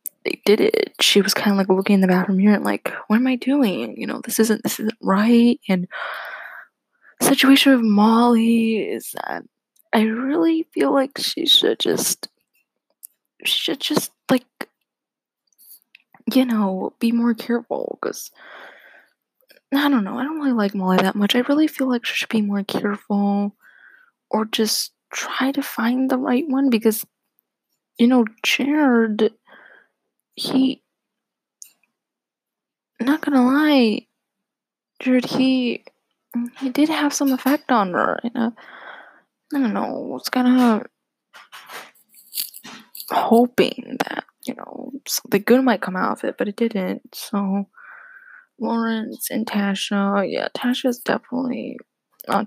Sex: female